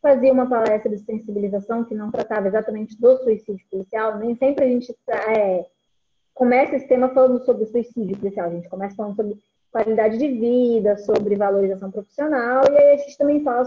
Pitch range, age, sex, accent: 205-265 Hz, 20-39, female, Brazilian